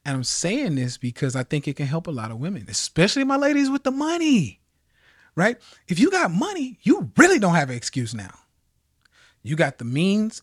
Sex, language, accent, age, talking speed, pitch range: male, English, American, 30-49, 205 wpm, 115-185 Hz